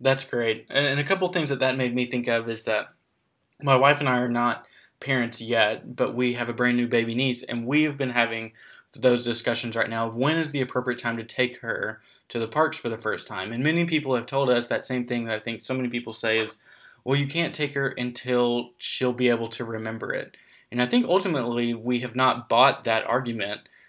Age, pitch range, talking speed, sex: 20-39, 115-130 Hz, 235 wpm, male